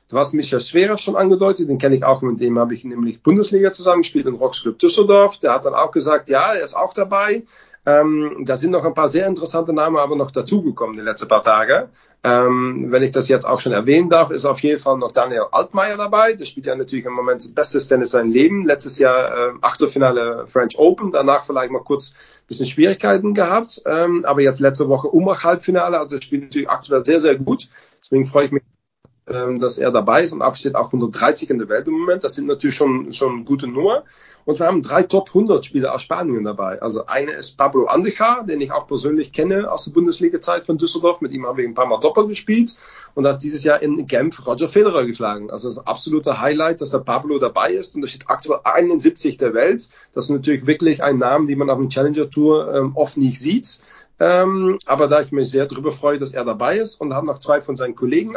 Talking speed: 225 wpm